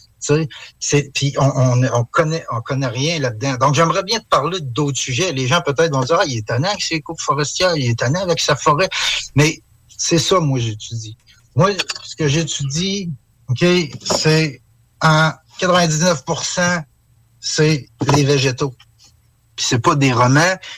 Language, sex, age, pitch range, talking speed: French, male, 60-79, 125-170 Hz, 175 wpm